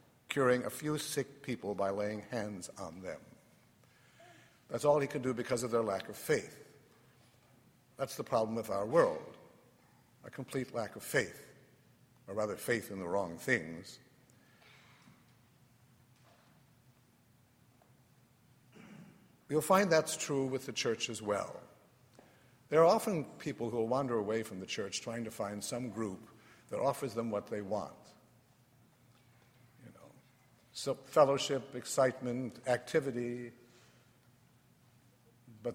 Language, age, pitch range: English, 60-79, 115-135 Hz